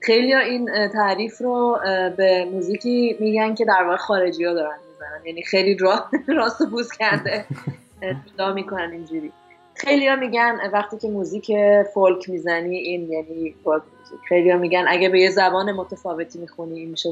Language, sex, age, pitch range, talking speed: Persian, female, 20-39, 180-220 Hz, 155 wpm